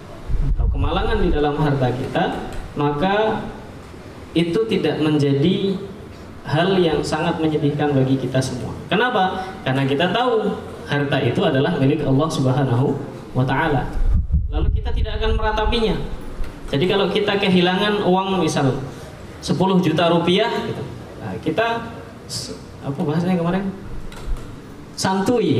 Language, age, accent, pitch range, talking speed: Indonesian, 20-39, native, 140-195 Hz, 110 wpm